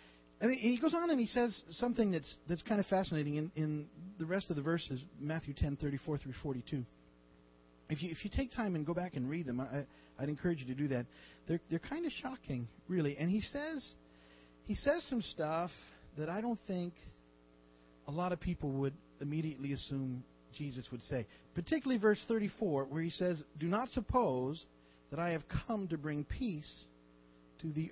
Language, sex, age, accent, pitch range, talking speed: English, male, 40-59, American, 120-180 Hz, 190 wpm